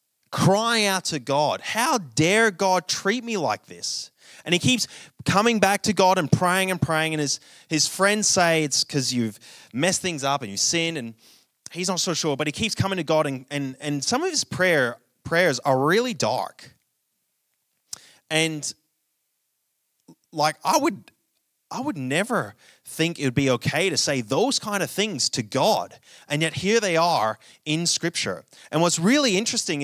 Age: 20-39